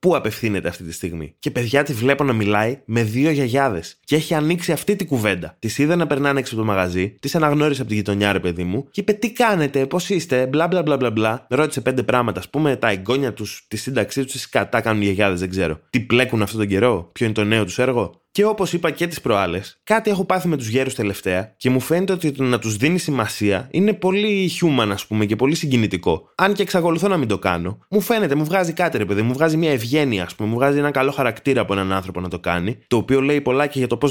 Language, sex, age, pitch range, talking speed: Greek, male, 20-39, 105-155 Hz, 245 wpm